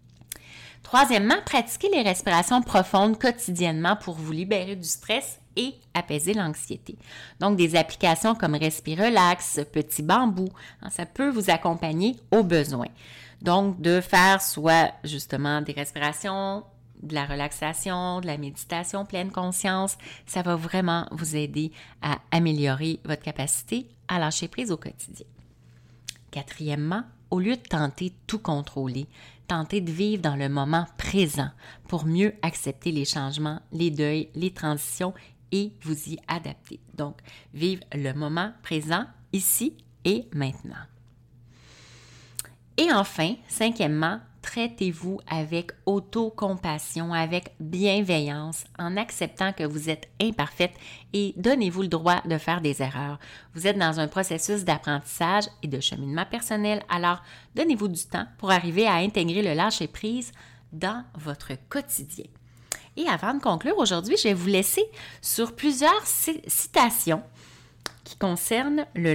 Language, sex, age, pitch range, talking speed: French, female, 30-49, 150-200 Hz, 130 wpm